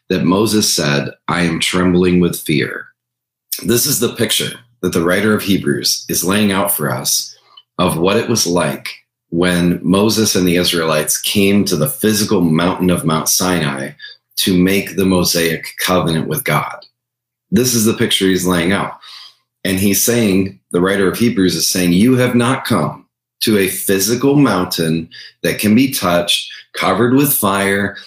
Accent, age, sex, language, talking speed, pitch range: American, 30-49, male, English, 165 wpm, 90-120 Hz